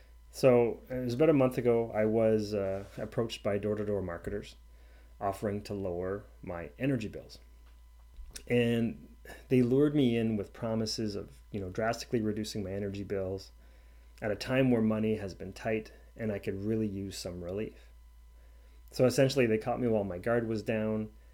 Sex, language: male, English